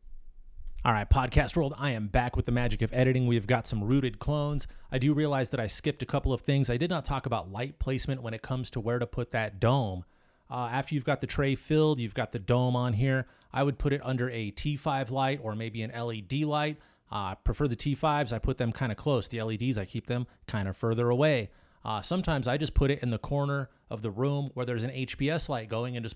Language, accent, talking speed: English, American, 250 wpm